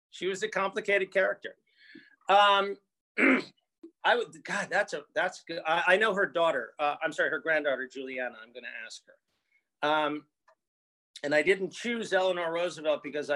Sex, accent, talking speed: male, American, 160 wpm